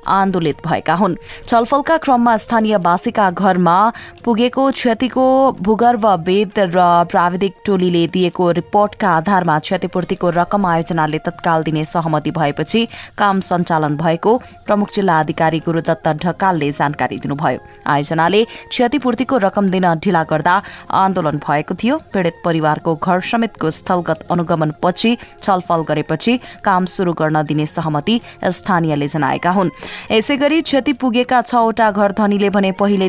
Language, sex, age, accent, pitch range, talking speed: English, female, 20-39, Indian, 165-210 Hz, 115 wpm